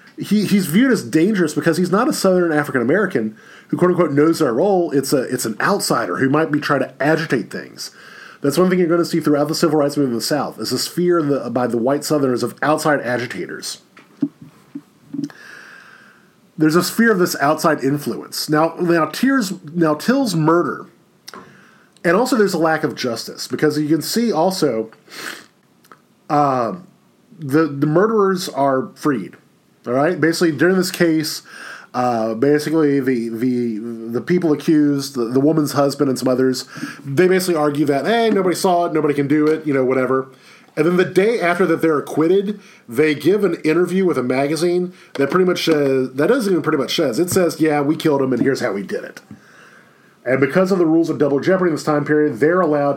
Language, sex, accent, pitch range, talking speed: English, male, American, 140-180 Hz, 195 wpm